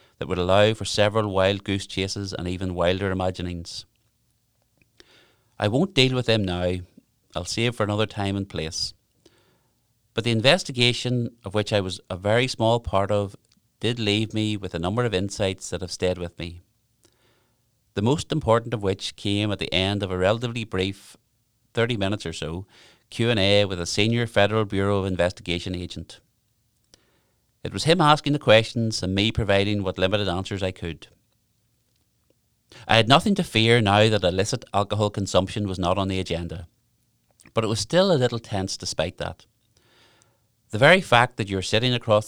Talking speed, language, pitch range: 170 wpm, English, 95-115 Hz